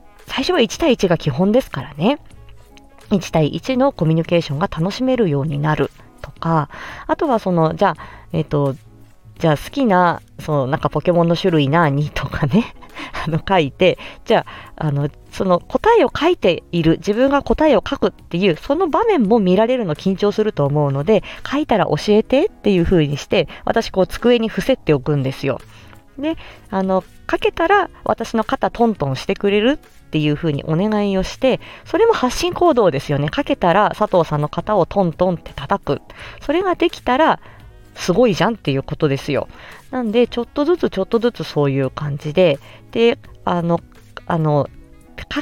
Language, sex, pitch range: Japanese, female, 150-230 Hz